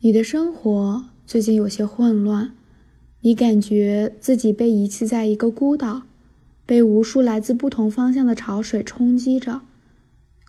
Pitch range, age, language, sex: 215-255 Hz, 20-39, Chinese, female